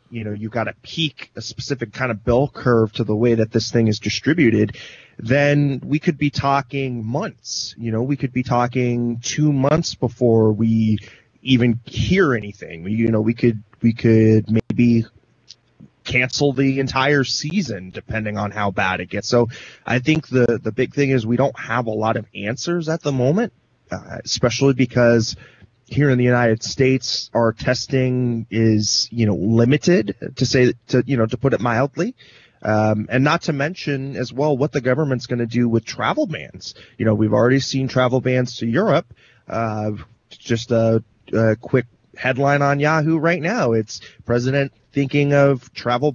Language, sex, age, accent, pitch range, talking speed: English, male, 20-39, American, 115-135 Hz, 180 wpm